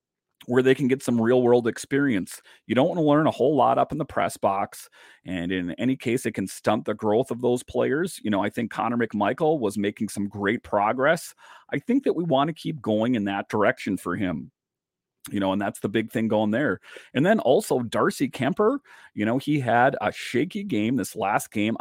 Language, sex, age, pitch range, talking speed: English, male, 40-59, 110-135 Hz, 220 wpm